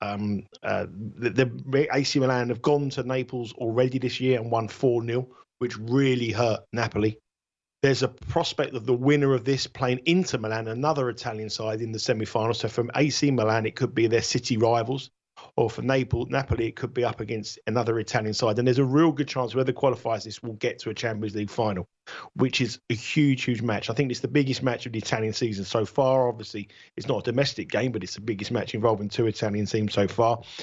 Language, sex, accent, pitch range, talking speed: English, male, British, 115-135 Hz, 215 wpm